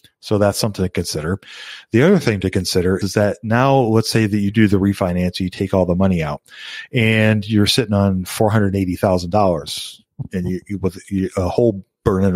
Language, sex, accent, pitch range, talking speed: English, male, American, 95-115 Hz, 180 wpm